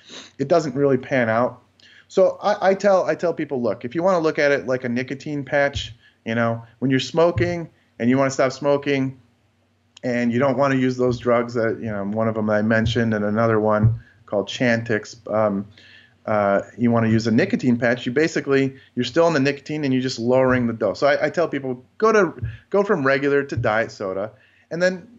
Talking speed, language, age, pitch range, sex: 220 wpm, English, 30-49, 110-140 Hz, male